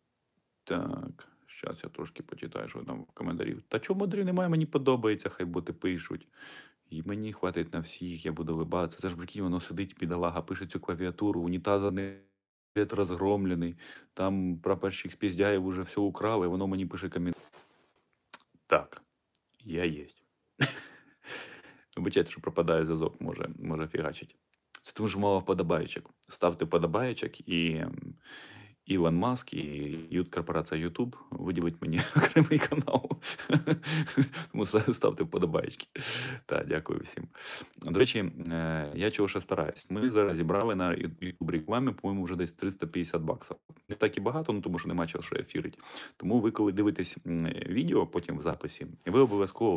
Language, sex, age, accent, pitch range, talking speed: Russian, male, 20-39, native, 85-105 Hz, 145 wpm